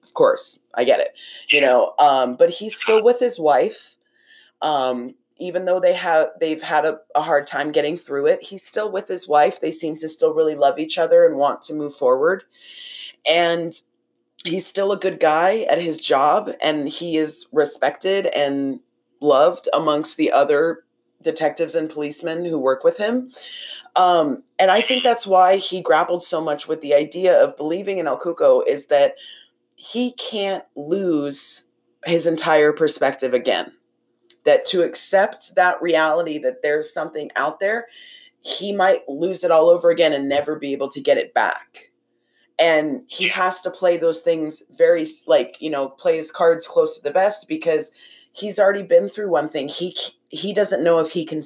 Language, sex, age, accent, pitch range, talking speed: English, female, 20-39, American, 150-210 Hz, 180 wpm